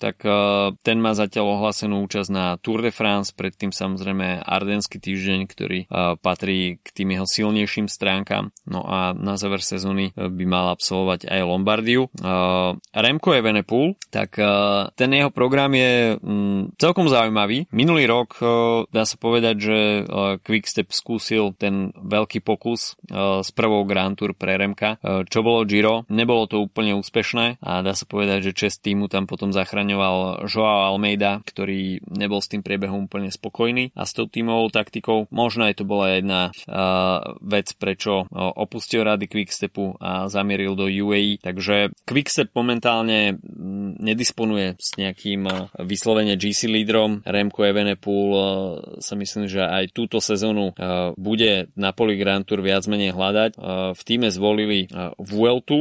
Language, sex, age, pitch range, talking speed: Slovak, male, 20-39, 95-110 Hz, 145 wpm